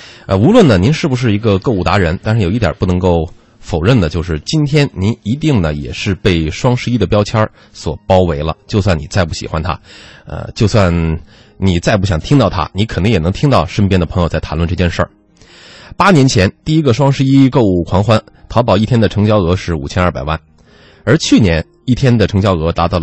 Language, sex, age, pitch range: Chinese, male, 20-39, 85-120 Hz